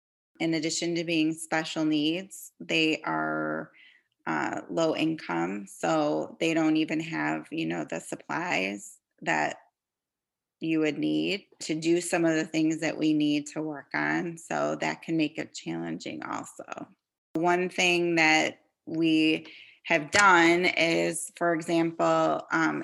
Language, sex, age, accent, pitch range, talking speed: English, female, 20-39, American, 150-165 Hz, 140 wpm